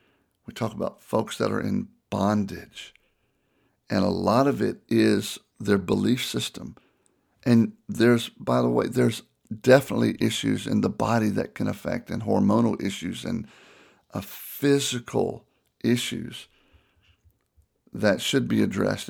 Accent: American